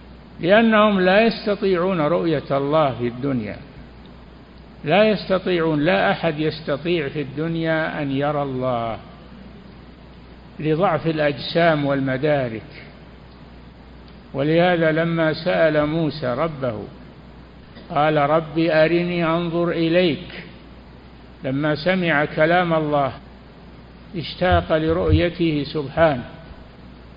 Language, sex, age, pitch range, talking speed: Arabic, male, 60-79, 140-175 Hz, 80 wpm